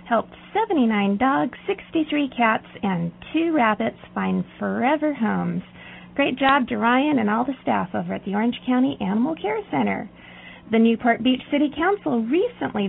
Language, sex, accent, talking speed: English, female, American, 155 wpm